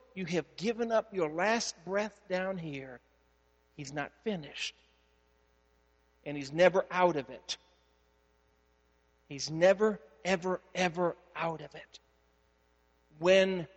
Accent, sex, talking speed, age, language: American, male, 115 wpm, 40-59, English